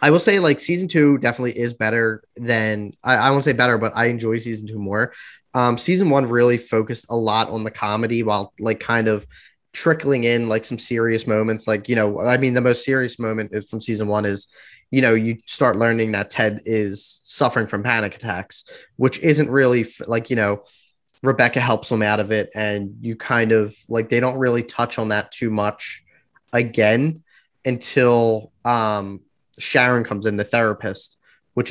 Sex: male